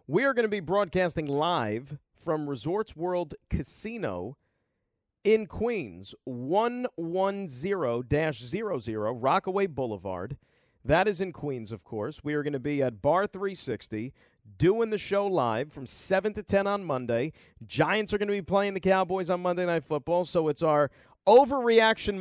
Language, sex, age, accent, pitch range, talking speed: English, male, 40-59, American, 140-200 Hz, 150 wpm